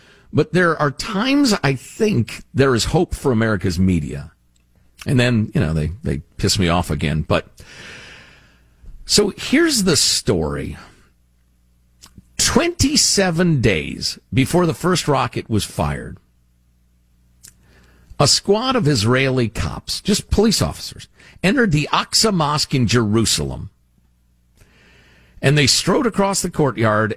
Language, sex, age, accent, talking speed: English, male, 50-69, American, 120 wpm